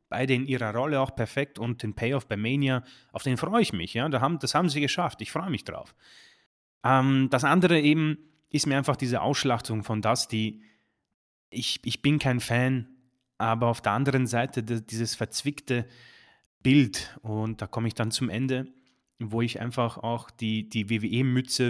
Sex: male